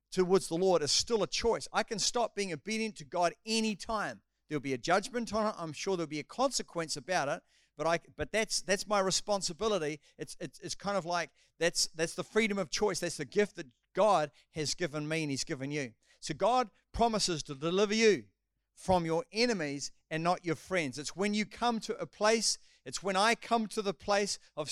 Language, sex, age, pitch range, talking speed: English, male, 50-69, 160-215 Hz, 215 wpm